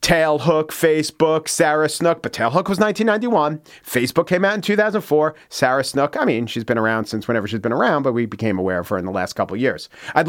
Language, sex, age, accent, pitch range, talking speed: English, male, 40-59, American, 140-180 Hz, 220 wpm